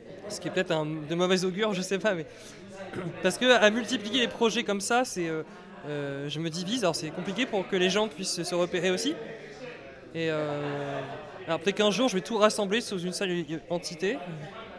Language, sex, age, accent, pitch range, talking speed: French, male, 20-39, French, 165-215 Hz, 205 wpm